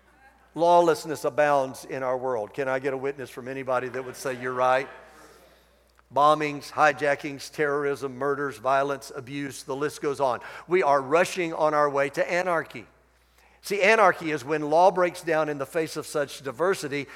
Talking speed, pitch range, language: 170 wpm, 140-175 Hz, English